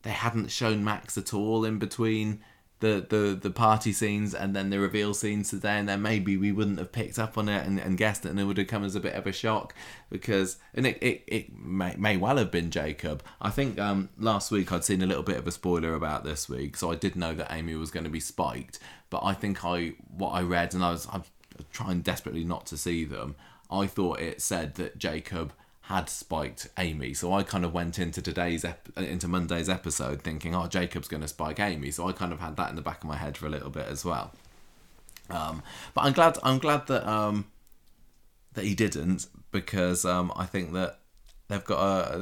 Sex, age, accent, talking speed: male, 20-39, British, 230 wpm